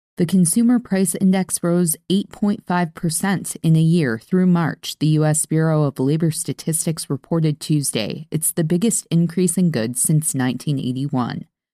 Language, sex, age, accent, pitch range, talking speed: English, female, 20-39, American, 150-185 Hz, 140 wpm